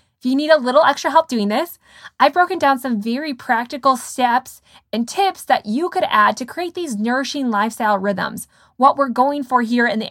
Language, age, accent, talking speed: English, 20-39, American, 210 wpm